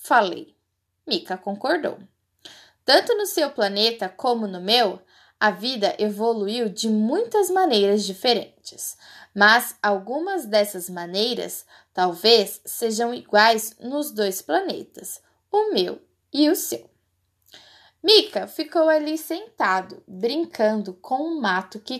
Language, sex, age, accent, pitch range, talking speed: Portuguese, female, 10-29, Brazilian, 195-295 Hz, 110 wpm